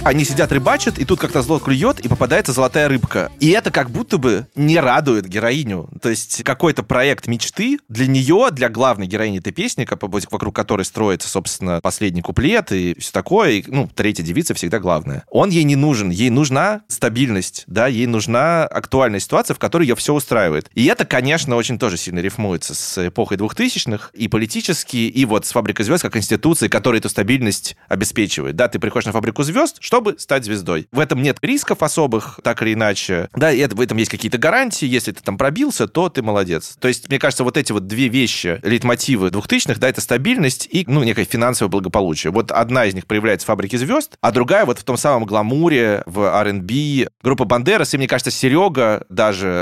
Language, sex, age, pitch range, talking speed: Russian, male, 20-39, 105-135 Hz, 195 wpm